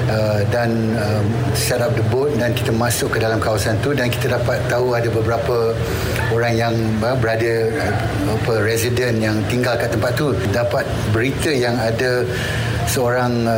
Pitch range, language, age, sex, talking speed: 115-125 Hz, Malay, 60-79, male, 165 wpm